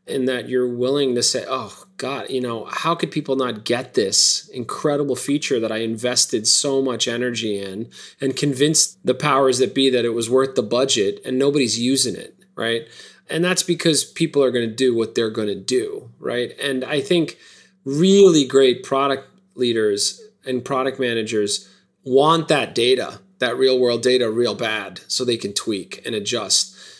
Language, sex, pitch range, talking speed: English, male, 125-170 Hz, 180 wpm